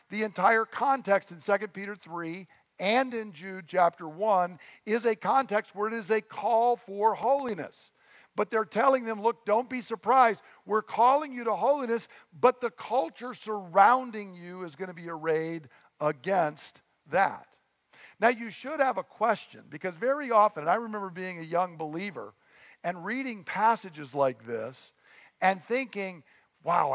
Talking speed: 160 wpm